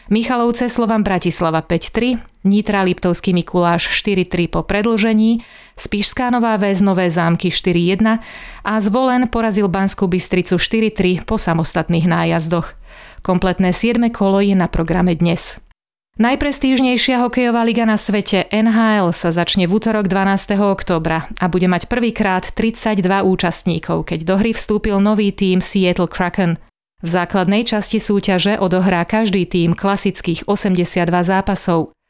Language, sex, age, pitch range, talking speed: Slovak, female, 30-49, 175-220 Hz, 130 wpm